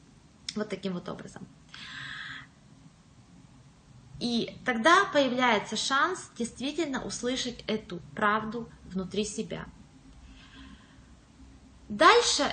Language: Russian